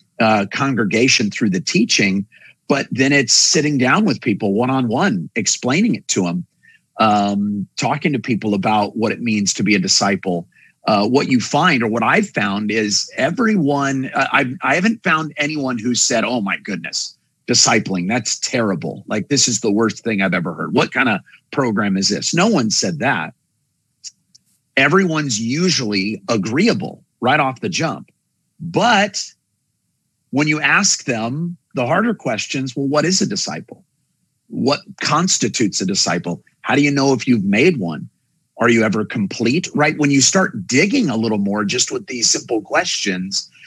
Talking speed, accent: 165 wpm, American